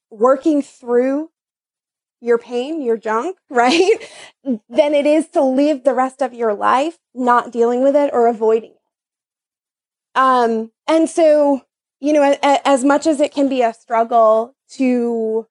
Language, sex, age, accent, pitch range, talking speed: English, female, 20-39, American, 245-310 Hz, 155 wpm